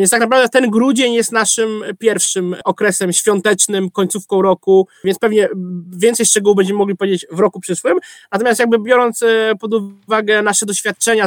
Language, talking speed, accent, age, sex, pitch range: Polish, 155 wpm, native, 20-39, male, 195-230 Hz